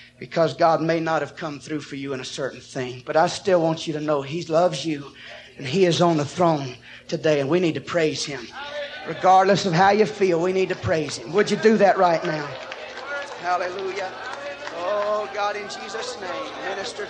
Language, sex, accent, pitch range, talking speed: English, male, American, 145-185 Hz, 205 wpm